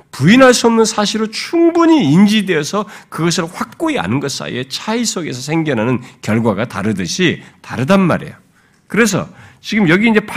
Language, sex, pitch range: Korean, male, 150-230 Hz